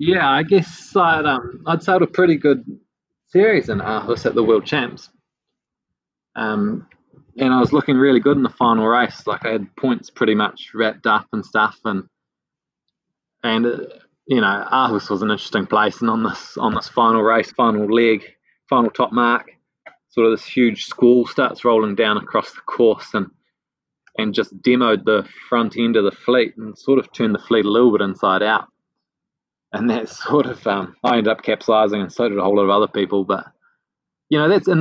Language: English